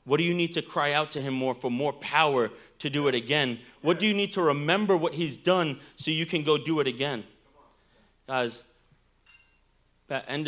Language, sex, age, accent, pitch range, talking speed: English, male, 30-49, American, 130-180 Hz, 205 wpm